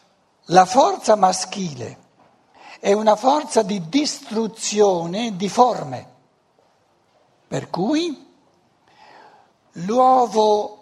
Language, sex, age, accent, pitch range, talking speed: Italian, male, 60-79, native, 180-230 Hz, 70 wpm